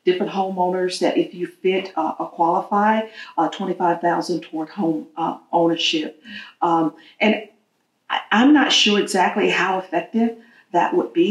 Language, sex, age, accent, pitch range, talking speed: English, female, 50-69, American, 175-225 Hz, 145 wpm